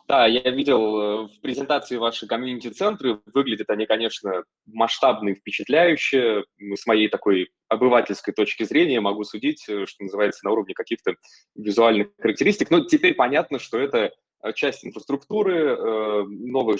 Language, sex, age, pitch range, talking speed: Russian, male, 20-39, 105-155 Hz, 130 wpm